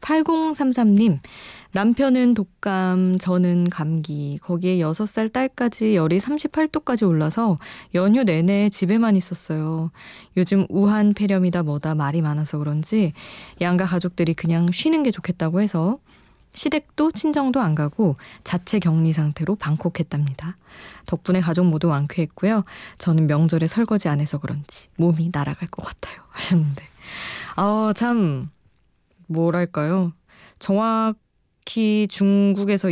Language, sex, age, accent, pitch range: Korean, female, 20-39, native, 165-210 Hz